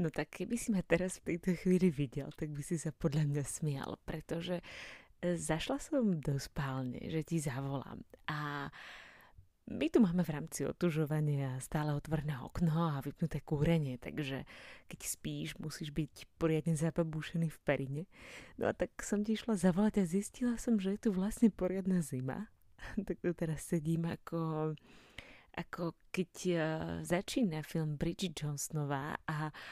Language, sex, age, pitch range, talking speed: Slovak, female, 20-39, 145-185 Hz, 150 wpm